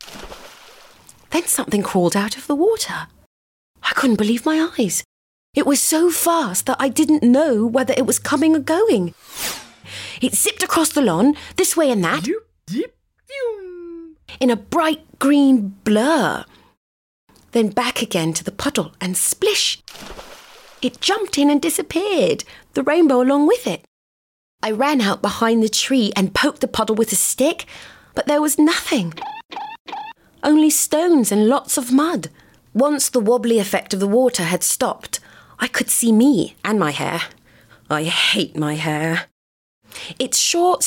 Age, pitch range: 30-49, 215-315 Hz